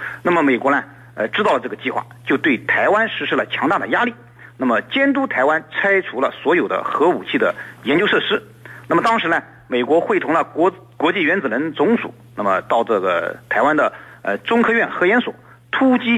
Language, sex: Chinese, male